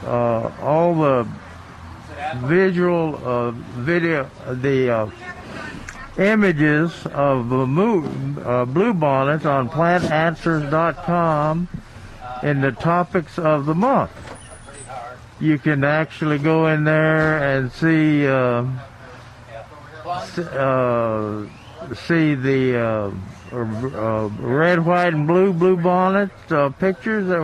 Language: English